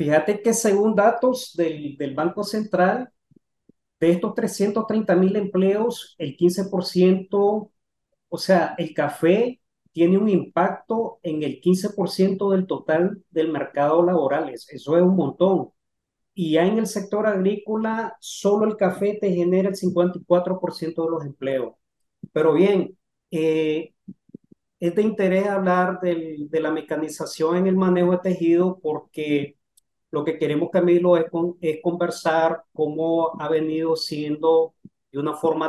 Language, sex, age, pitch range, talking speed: Spanish, male, 40-59, 155-185 Hz, 135 wpm